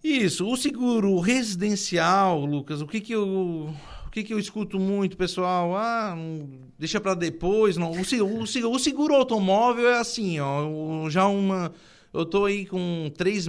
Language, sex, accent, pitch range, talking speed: Portuguese, male, Brazilian, 165-210 Hz, 165 wpm